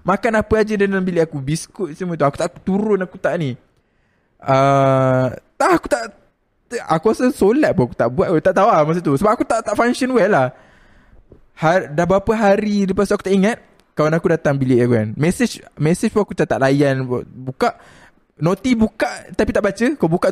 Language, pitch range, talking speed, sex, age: Malay, 130-200 Hz, 205 wpm, male, 20-39